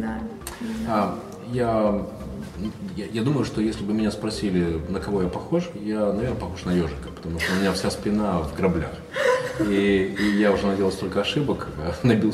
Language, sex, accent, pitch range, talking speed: Russian, male, native, 90-120 Hz, 170 wpm